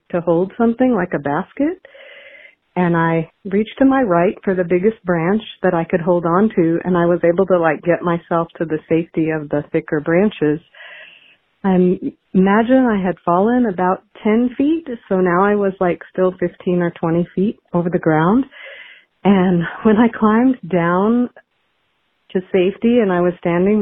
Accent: American